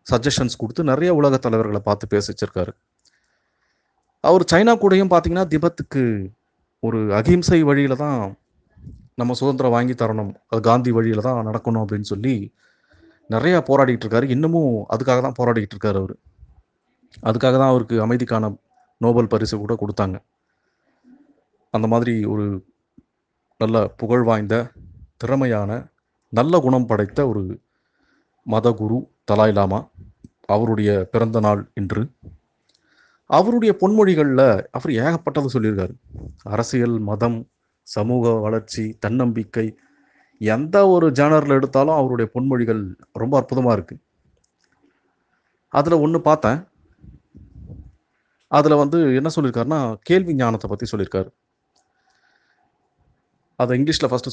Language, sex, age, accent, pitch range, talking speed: Tamil, male, 30-49, native, 110-145 Hz, 105 wpm